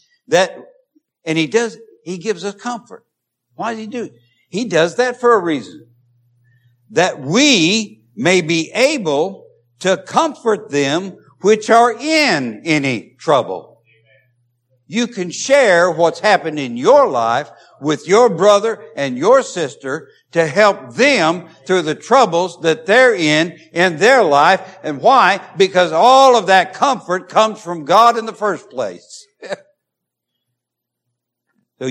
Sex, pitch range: male, 155-235 Hz